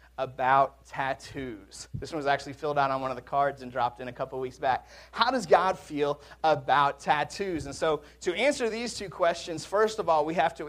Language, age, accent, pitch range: English, 30-49, American, 140-200 Hz